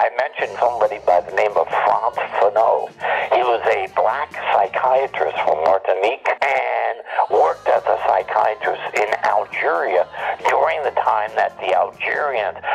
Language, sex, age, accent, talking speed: English, male, 60-79, American, 135 wpm